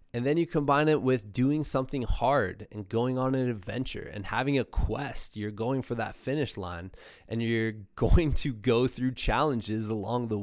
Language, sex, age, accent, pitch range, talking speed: English, male, 20-39, American, 105-125 Hz, 190 wpm